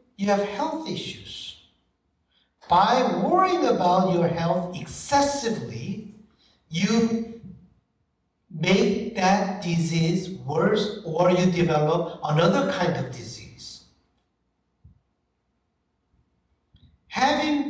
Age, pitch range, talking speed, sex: 60-79, 145-200 Hz, 80 wpm, male